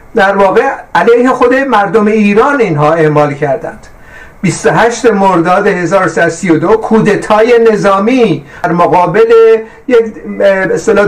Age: 50-69